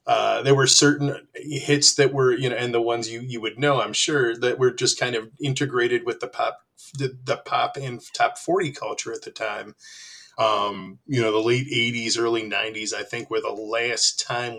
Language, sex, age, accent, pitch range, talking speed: English, male, 20-39, American, 115-150 Hz, 210 wpm